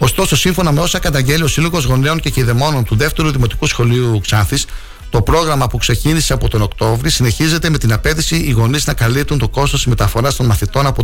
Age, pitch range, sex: 60-79, 115-145 Hz, male